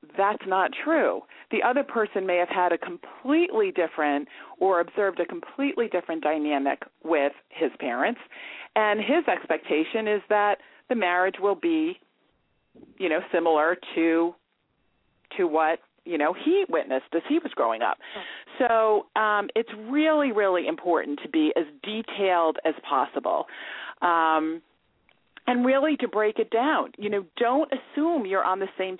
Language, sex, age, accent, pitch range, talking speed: English, female, 40-59, American, 175-270 Hz, 150 wpm